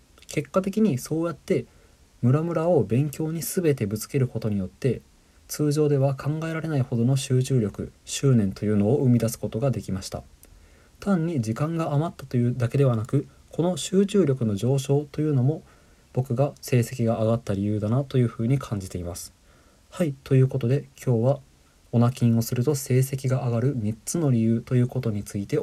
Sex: male